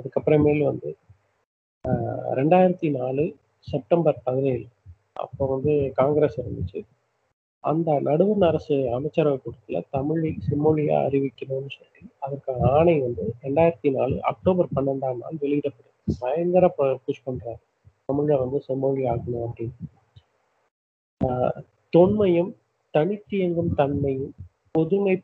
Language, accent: Tamil, native